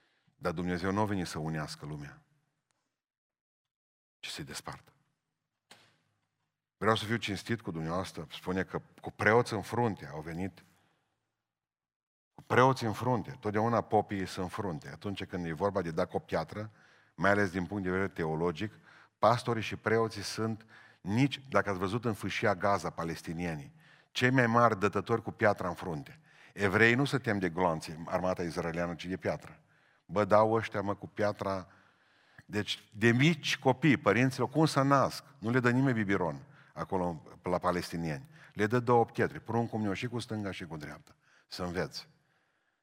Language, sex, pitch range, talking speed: Romanian, male, 95-125 Hz, 160 wpm